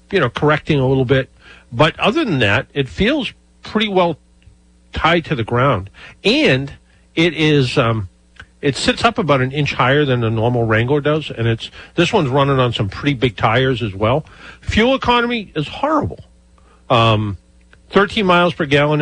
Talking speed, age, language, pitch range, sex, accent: 175 wpm, 50-69, English, 105-150 Hz, male, American